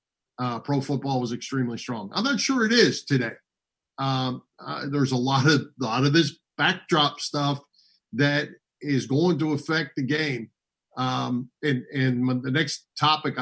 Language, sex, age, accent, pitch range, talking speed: English, male, 50-69, American, 130-155 Hz, 160 wpm